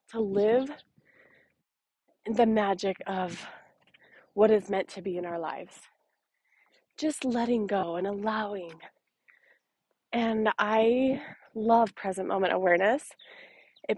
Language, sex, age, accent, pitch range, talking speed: English, female, 20-39, American, 190-245 Hz, 105 wpm